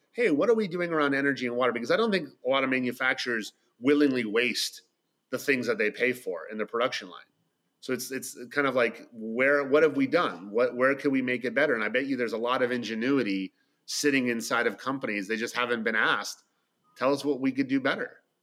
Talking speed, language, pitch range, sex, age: 235 wpm, English, 110-140 Hz, male, 30-49